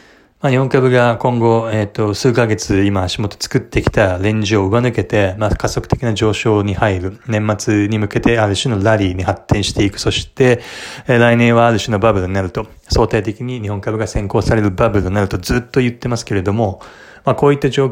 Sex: male